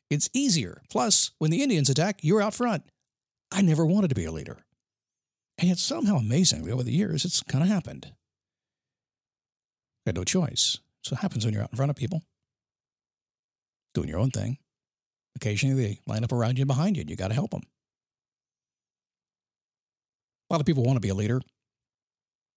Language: English